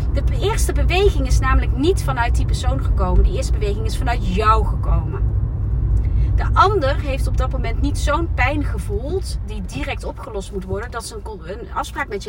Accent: Dutch